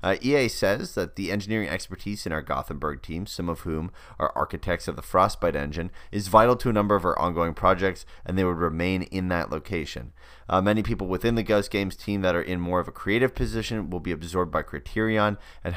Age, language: 30-49, English